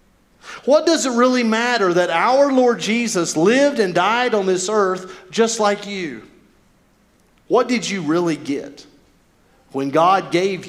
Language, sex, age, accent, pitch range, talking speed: English, male, 40-59, American, 160-230 Hz, 145 wpm